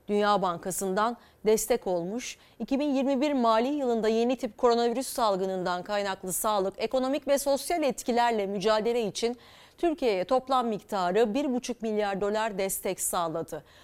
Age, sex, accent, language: 40-59, female, native, Turkish